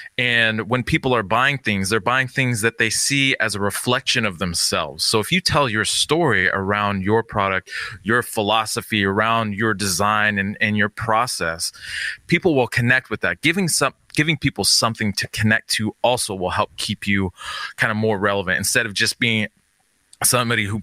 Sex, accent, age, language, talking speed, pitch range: male, American, 30-49, English, 180 wpm, 95-120 Hz